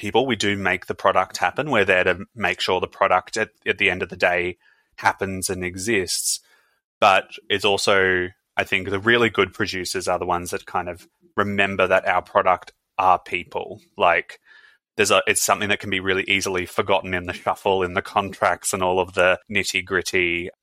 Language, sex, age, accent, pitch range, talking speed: English, male, 20-39, Australian, 90-100 Hz, 200 wpm